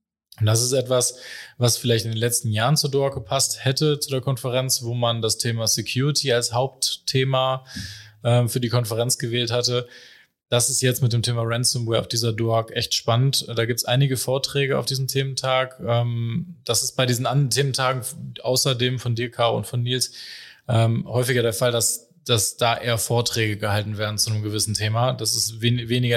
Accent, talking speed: German, 185 wpm